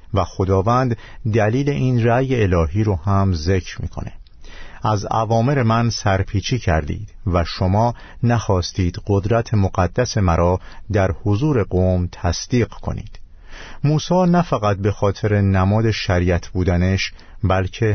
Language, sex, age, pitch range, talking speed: Persian, male, 50-69, 95-120 Hz, 115 wpm